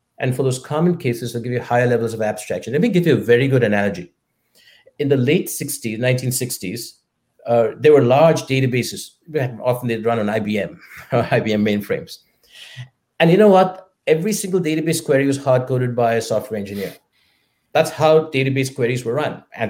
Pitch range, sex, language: 115-155 Hz, male, English